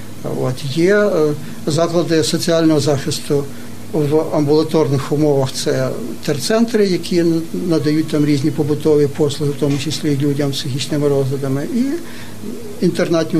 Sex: male